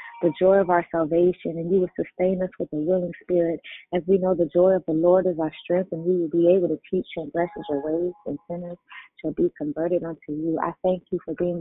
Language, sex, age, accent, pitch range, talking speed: English, female, 30-49, American, 165-185 Hz, 250 wpm